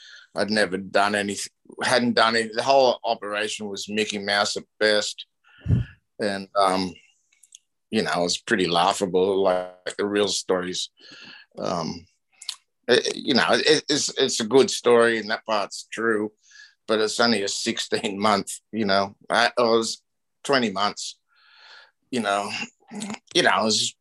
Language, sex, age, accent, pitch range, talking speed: English, male, 50-69, American, 100-115 Hz, 140 wpm